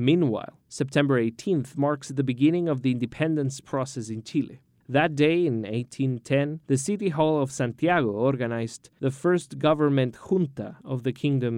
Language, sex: English, male